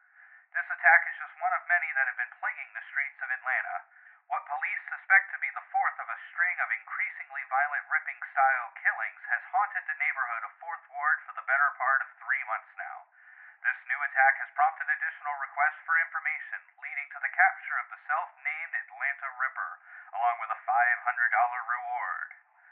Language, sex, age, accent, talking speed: English, male, 30-49, American, 180 wpm